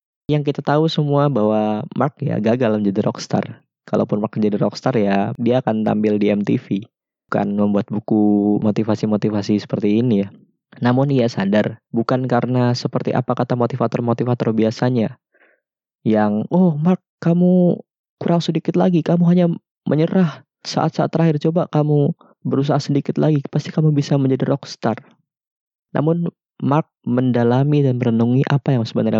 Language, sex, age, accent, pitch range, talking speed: Indonesian, male, 20-39, native, 110-145 Hz, 140 wpm